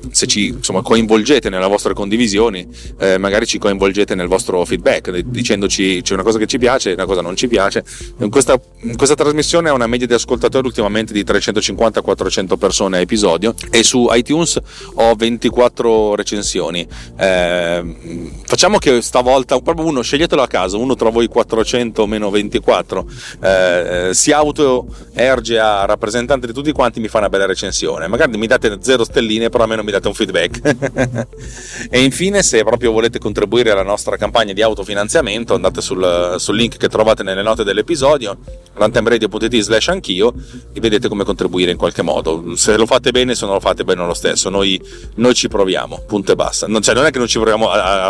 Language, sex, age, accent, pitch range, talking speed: Italian, male, 30-49, native, 95-125 Hz, 175 wpm